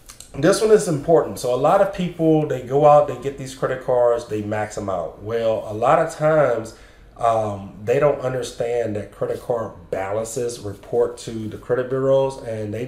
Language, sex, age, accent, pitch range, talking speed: English, male, 30-49, American, 110-140 Hz, 190 wpm